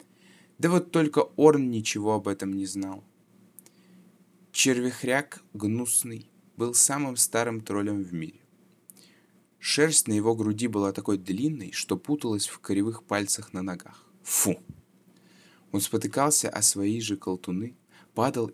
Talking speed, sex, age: 125 wpm, male, 20-39